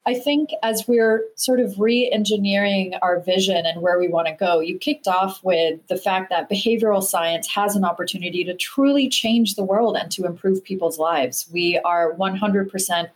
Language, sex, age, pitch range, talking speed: English, female, 30-49, 165-210 Hz, 185 wpm